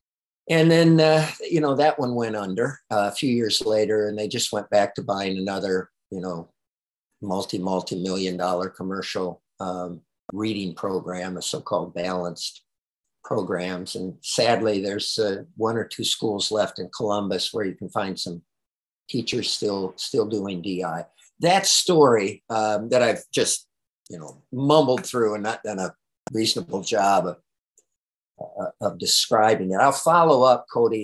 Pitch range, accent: 95-115 Hz, American